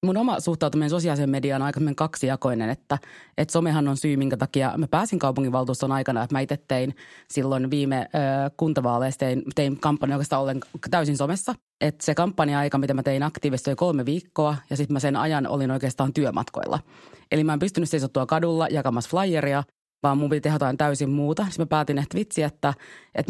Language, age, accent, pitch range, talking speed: Finnish, 30-49, native, 135-155 Hz, 195 wpm